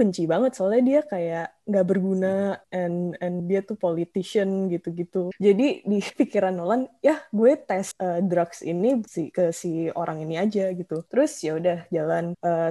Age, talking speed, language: 20-39, 160 wpm, Indonesian